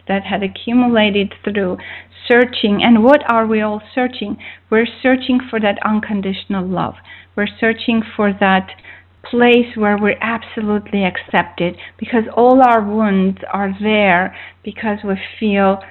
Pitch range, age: 190-225 Hz, 40-59